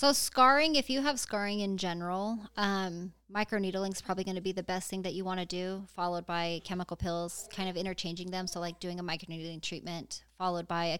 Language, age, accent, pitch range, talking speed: English, 20-39, American, 170-195 Hz, 220 wpm